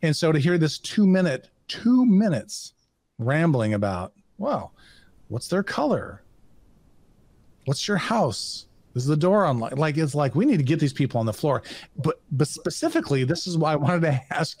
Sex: male